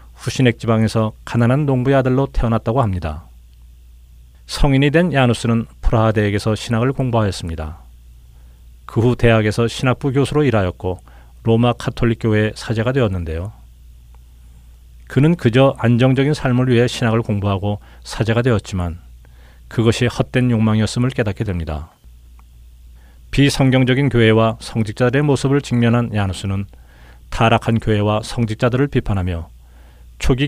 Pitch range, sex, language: 80-125 Hz, male, Korean